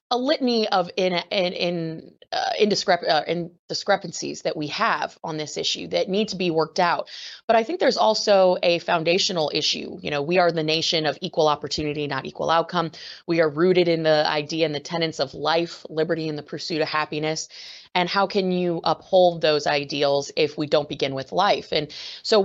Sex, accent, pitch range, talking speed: female, American, 160-185 Hz, 200 wpm